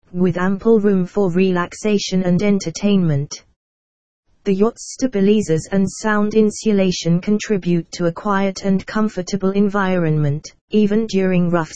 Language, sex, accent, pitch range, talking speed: English, female, British, 165-205 Hz, 115 wpm